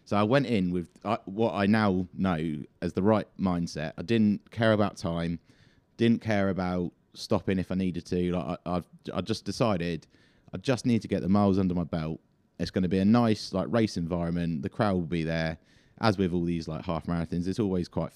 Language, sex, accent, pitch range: English, male, British, 85-105 Hz